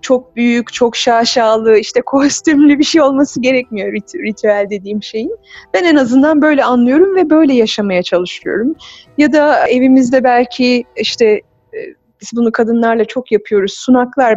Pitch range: 215-290 Hz